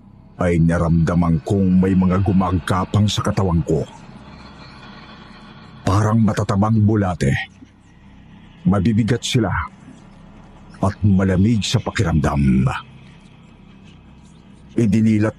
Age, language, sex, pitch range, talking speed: 50-69, Filipino, male, 85-110 Hz, 75 wpm